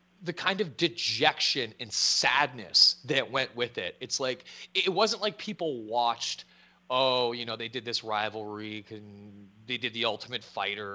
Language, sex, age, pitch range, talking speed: English, male, 30-49, 110-165 Hz, 165 wpm